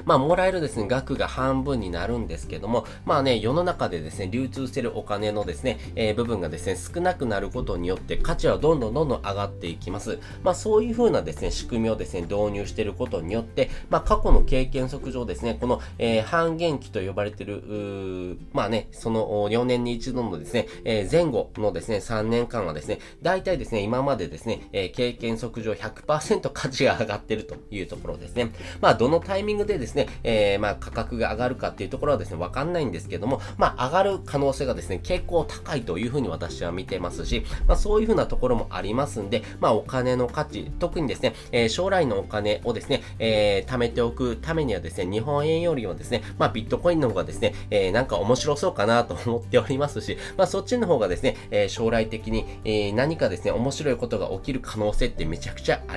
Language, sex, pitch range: Japanese, male, 100-130 Hz